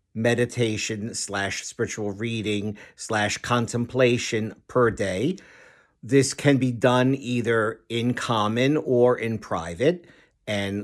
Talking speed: 80 wpm